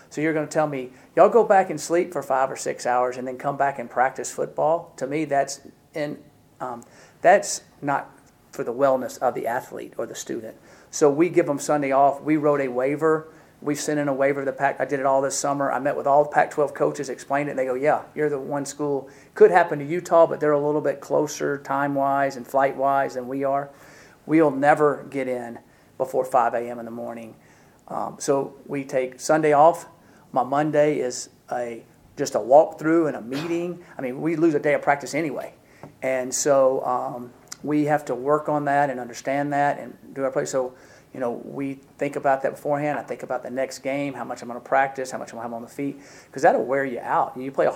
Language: English